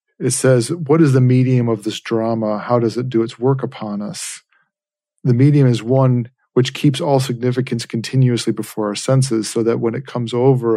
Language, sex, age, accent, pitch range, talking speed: English, male, 40-59, American, 115-135 Hz, 195 wpm